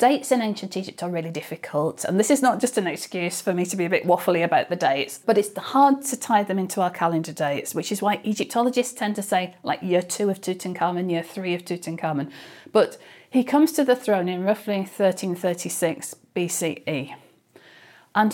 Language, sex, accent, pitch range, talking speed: English, female, British, 175-220 Hz, 200 wpm